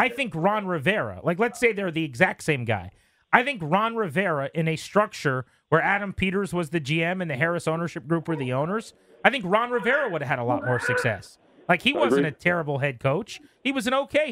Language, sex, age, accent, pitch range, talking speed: English, male, 30-49, American, 150-210 Hz, 230 wpm